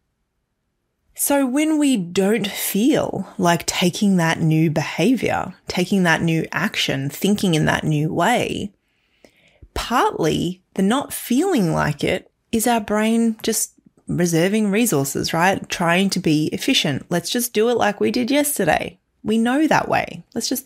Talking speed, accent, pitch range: 145 wpm, Australian, 160-230 Hz